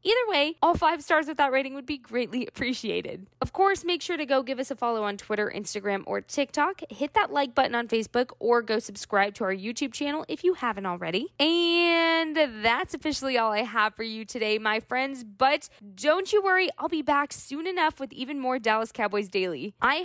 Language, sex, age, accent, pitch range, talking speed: English, female, 20-39, American, 220-310 Hz, 215 wpm